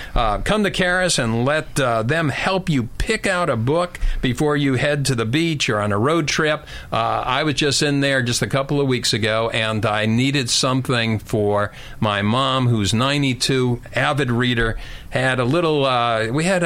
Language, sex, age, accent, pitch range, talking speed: English, male, 50-69, American, 115-165 Hz, 195 wpm